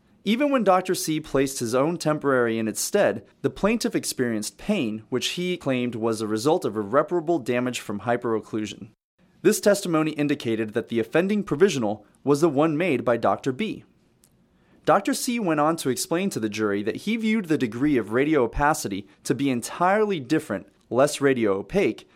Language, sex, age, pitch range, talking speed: English, male, 30-49, 120-175 Hz, 170 wpm